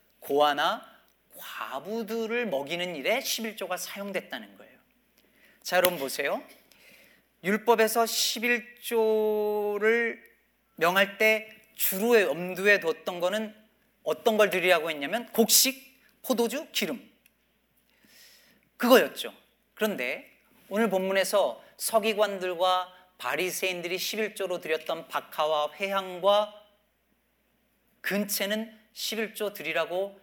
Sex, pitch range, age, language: male, 180-230 Hz, 40-59, Korean